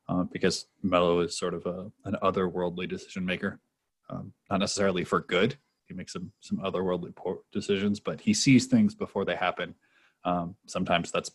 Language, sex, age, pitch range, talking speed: English, male, 20-39, 90-110 Hz, 165 wpm